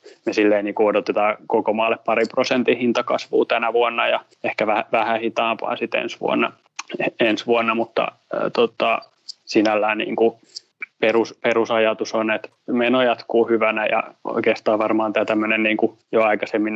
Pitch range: 110-115 Hz